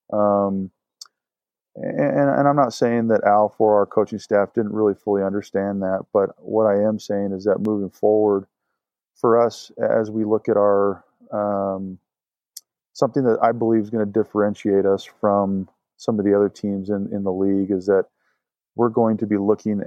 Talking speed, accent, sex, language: 180 wpm, American, male, English